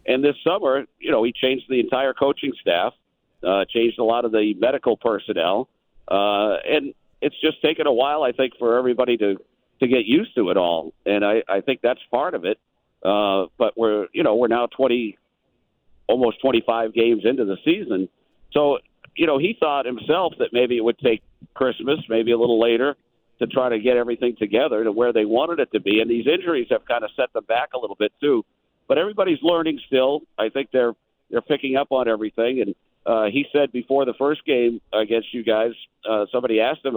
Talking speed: 210 wpm